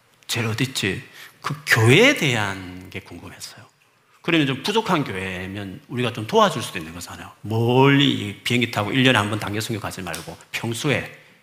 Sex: male